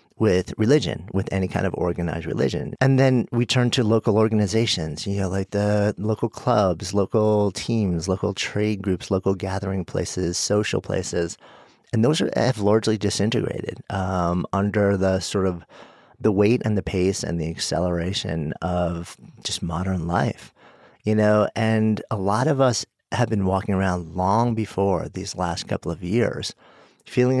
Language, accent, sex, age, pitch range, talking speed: English, American, male, 40-59, 90-110 Hz, 160 wpm